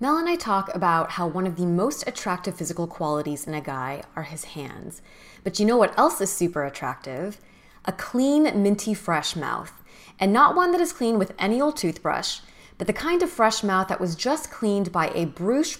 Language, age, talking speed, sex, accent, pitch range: English, 20-39, 210 wpm, female, American, 170-230 Hz